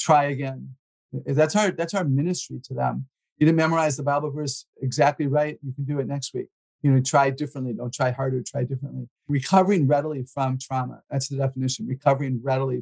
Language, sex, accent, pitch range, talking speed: English, male, American, 130-155 Hz, 190 wpm